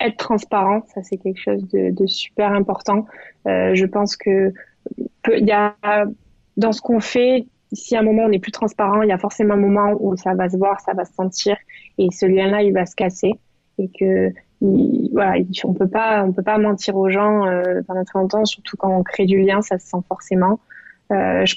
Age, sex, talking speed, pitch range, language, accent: 20-39, female, 215 wpm, 190-210 Hz, French, French